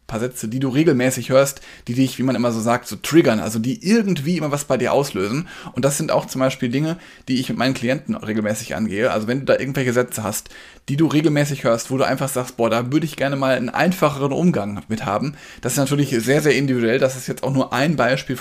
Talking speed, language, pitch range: 250 wpm, German, 120-140 Hz